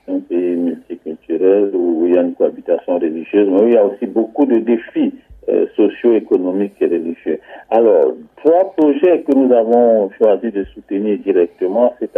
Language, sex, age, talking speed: French, male, 60-79, 170 wpm